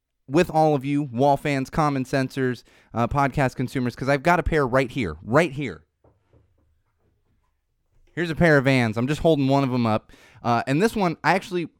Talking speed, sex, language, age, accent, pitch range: 195 wpm, male, English, 30-49, American, 105-150 Hz